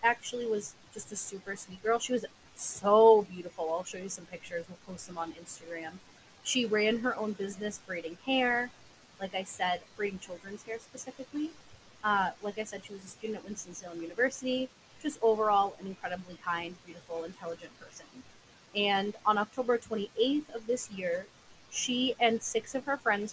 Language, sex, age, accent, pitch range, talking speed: English, female, 20-39, American, 185-235 Hz, 170 wpm